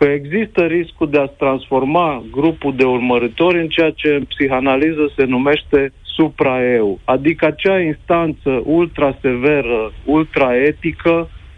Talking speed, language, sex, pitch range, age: 115 wpm, Romanian, male, 130-160 Hz, 50-69